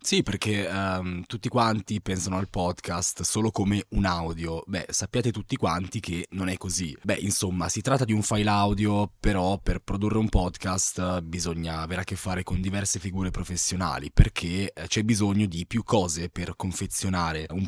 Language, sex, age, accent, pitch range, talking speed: Italian, male, 20-39, native, 90-110 Hz, 175 wpm